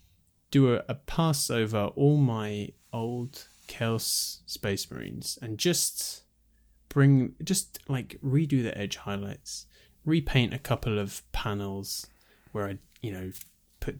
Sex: male